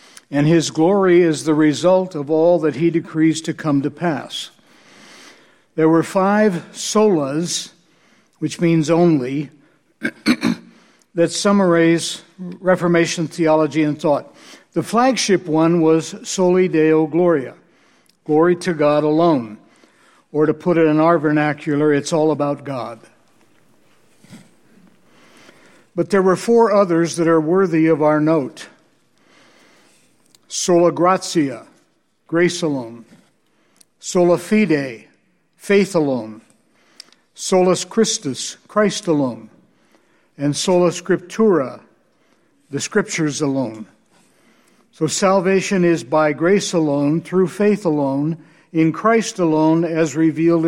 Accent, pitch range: American, 155-185 Hz